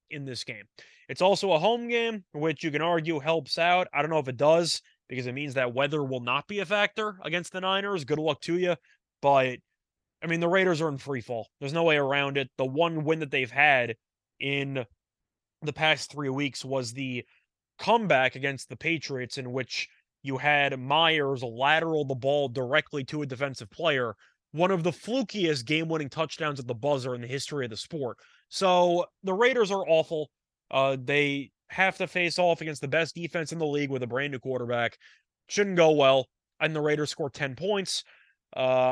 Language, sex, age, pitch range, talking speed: English, male, 20-39, 135-170 Hz, 200 wpm